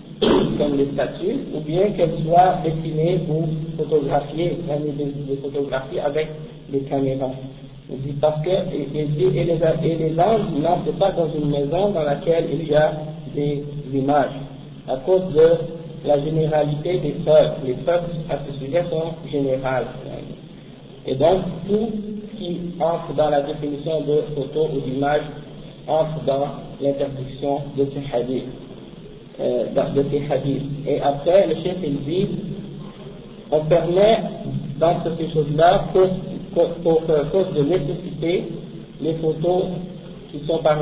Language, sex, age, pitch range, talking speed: French, male, 50-69, 145-170 Hz, 140 wpm